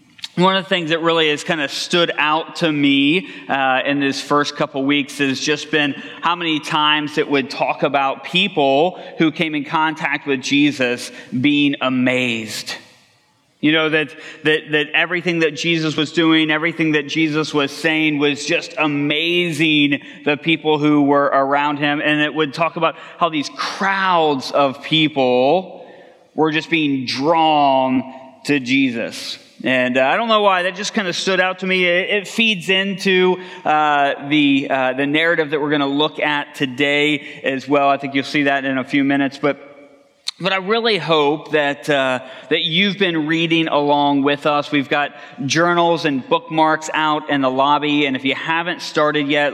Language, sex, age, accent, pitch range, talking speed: English, male, 30-49, American, 140-165 Hz, 180 wpm